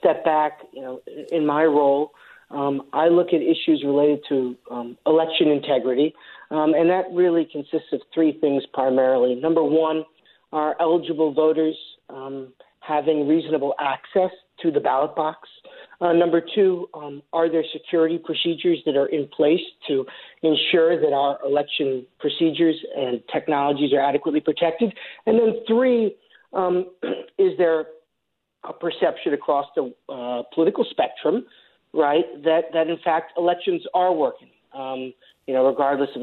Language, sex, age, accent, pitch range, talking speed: English, male, 40-59, American, 140-170 Hz, 145 wpm